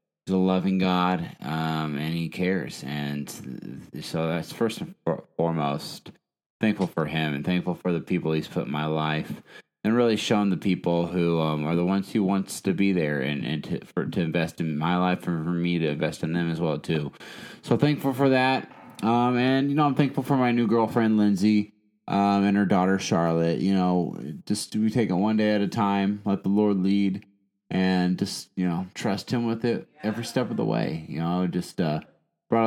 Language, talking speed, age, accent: English, 210 wpm, 20-39, American